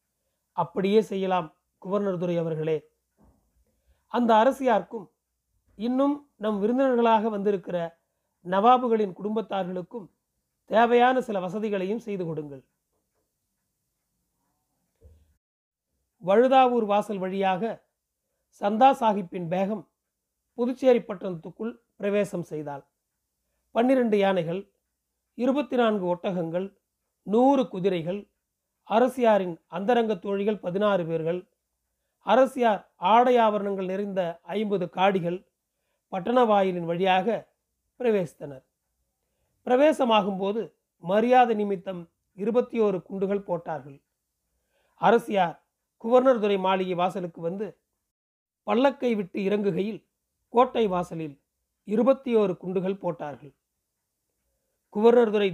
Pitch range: 180-230 Hz